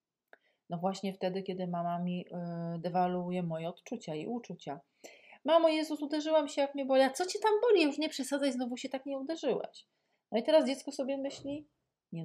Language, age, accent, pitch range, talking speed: Polish, 40-59, native, 175-210 Hz, 190 wpm